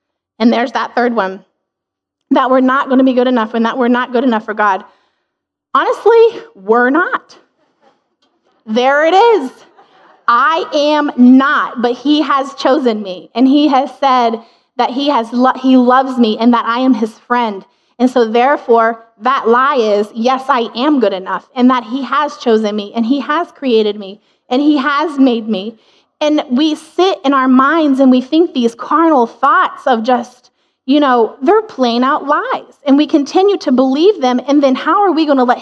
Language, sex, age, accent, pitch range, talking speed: English, female, 20-39, American, 230-280 Hz, 185 wpm